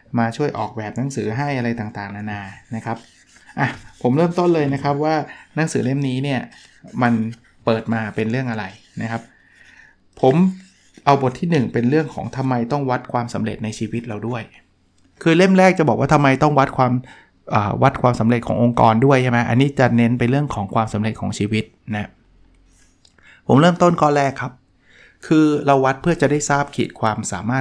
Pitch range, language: 110-140 Hz, Thai